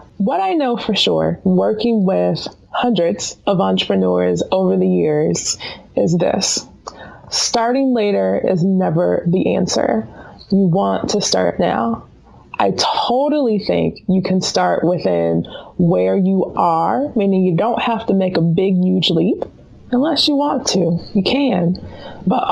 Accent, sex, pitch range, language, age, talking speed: American, female, 175-215 Hz, English, 20-39, 140 wpm